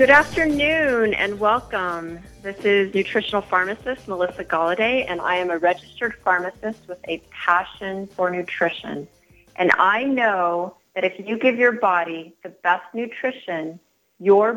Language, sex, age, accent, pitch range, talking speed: English, female, 30-49, American, 175-205 Hz, 140 wpm